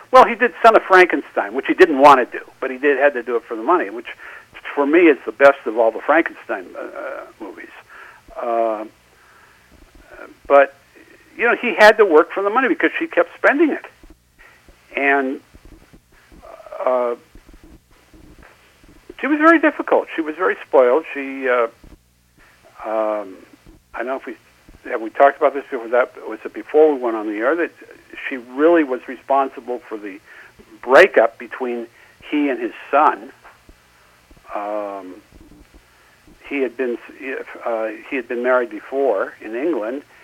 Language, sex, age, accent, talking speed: English, male, 60-79, American, 160 wpm